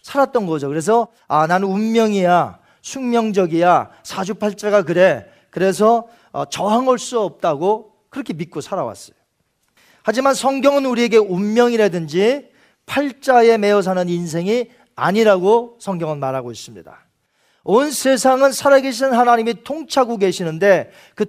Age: 40-59